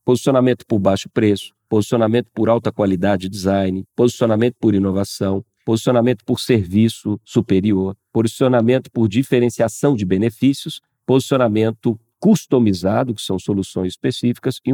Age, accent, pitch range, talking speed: 50-69, Brazilian, 100-125 Hz, 115 wpm